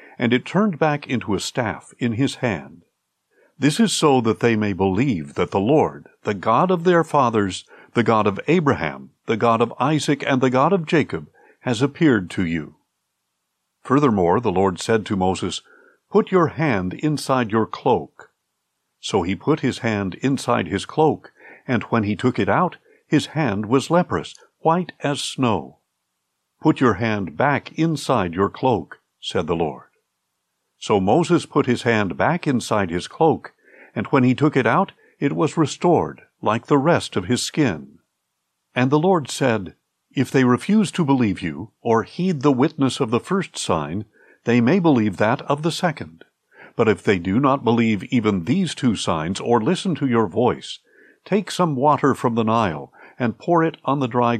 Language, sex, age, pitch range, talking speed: English, male, 50-69, 110-150 Hz, 180 wpm